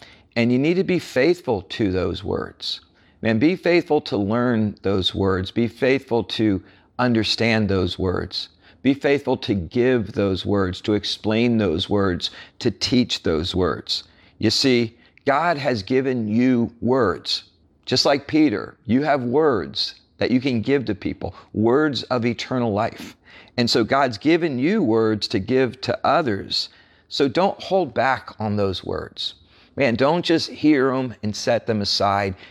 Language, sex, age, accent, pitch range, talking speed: English, male, 50-69, American, 100-130 Hz, 155 wpm